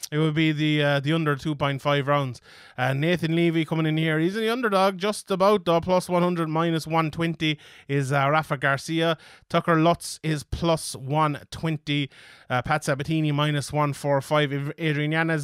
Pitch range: 145-170 Hz